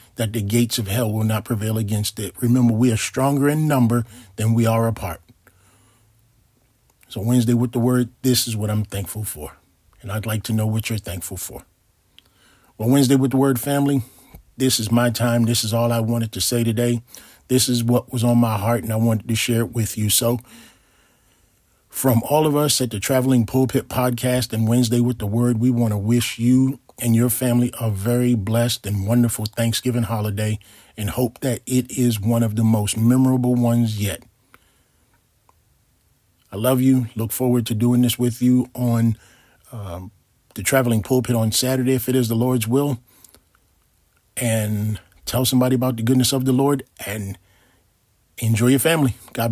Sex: male